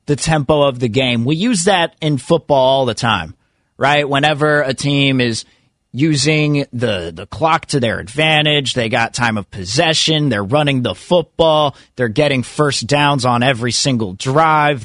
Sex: male